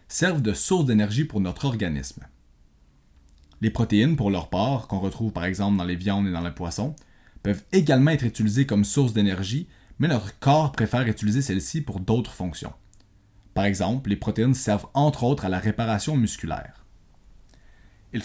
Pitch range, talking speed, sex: 95-130 Hz, 170 wpm, male